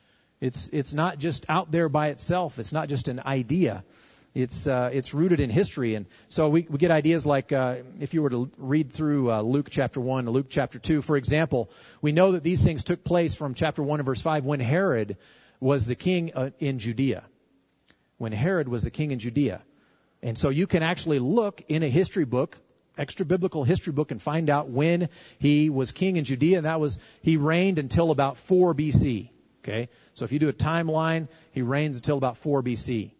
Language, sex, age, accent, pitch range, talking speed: English, male, 40-59, American, 120-155 Hz, 210 wpm